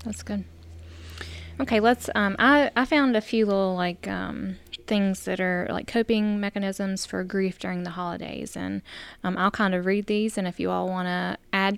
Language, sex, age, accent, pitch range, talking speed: English, female, 10-29, American, 180-200 Hz, 195 wpm